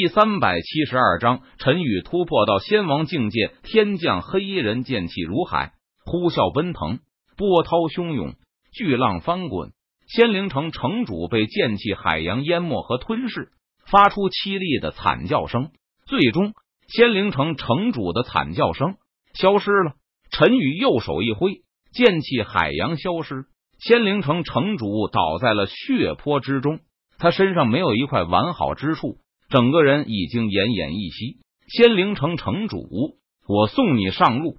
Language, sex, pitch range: Chinese, male, 120-195 Hz